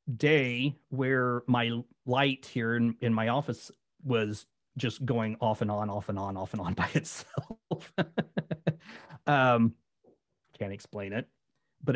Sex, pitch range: male, 110-130 Hz